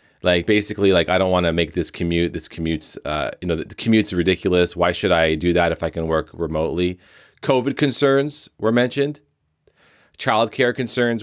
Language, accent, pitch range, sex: English, American, 90-130 Hz, male